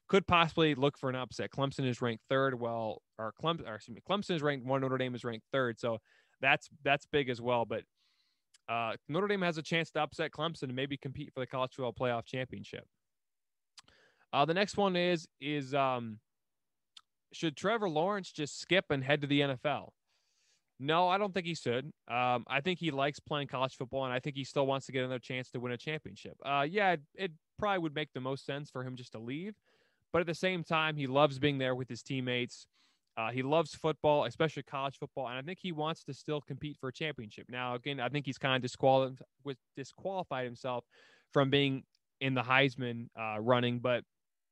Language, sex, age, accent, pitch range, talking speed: English, male, 20-39, American, 125-155 Hz, 215 wpm